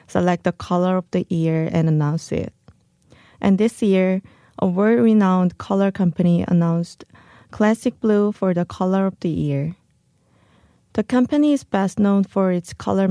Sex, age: female, 20-39